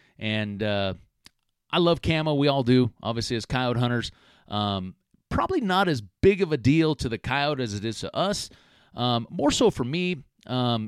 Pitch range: 105-130 Hz